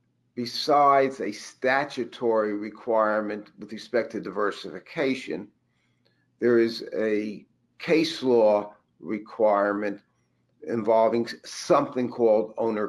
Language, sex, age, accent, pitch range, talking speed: English, male, 50-69, American, 105-135 Hz, 85 wpm